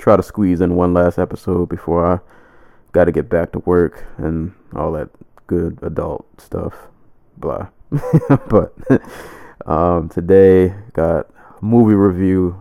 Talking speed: 135 wpm